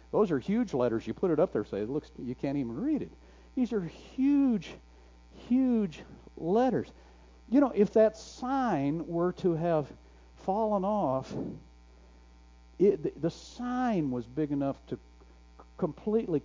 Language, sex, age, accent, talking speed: English, male, 60-79, American, 155 wpm